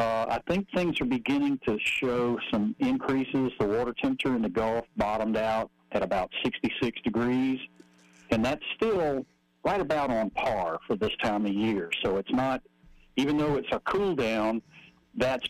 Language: English